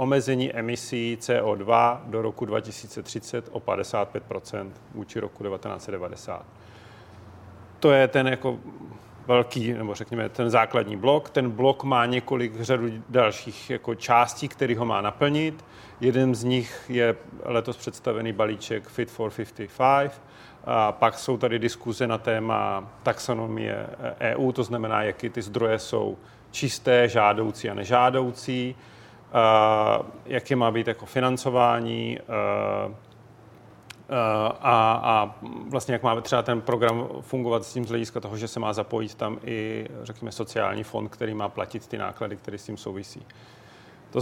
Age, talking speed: 40-59, 130 wpm